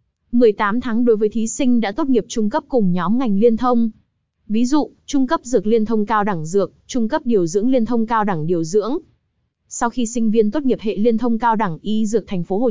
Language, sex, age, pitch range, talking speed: Vietnamese, female, 20-39, 200-240 Hz, 245 wpm